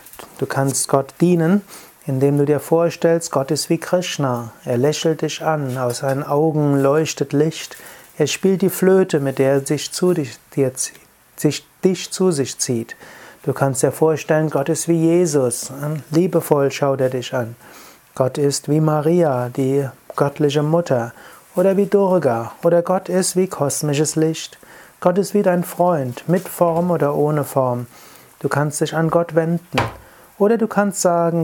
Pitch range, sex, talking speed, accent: 140-170 Hz, male, 165 wpm, German